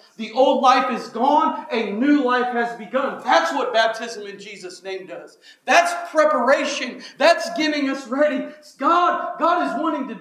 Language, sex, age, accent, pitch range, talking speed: English, male, 40-59, American, 225-295 Hz, 170 wpm